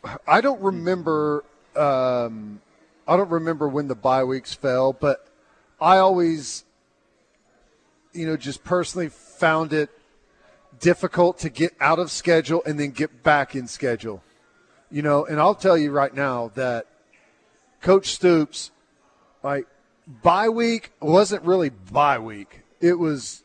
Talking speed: 135 wpm